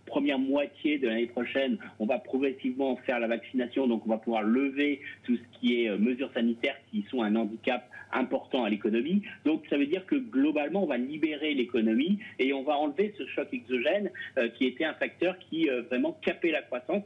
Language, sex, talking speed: French, male, 200 wpm